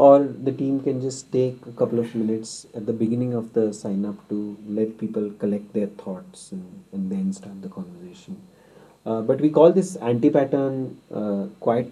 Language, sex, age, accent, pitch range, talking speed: English, male, 30-49, Indian, 110-160 Hz, 175 wpm